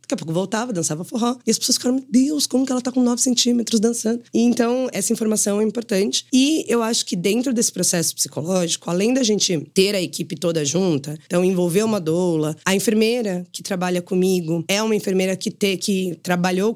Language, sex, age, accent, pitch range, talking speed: Portuguese, female, 20-39, Brazilian, 160-205 Hz, 205 wpm